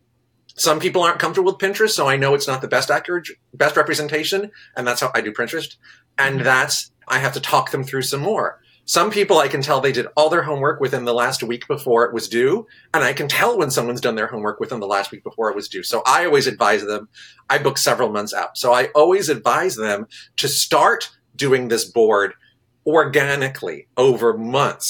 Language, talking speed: English, 215 wpm